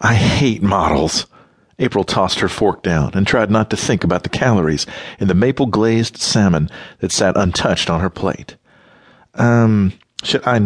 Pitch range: 95-120 Hz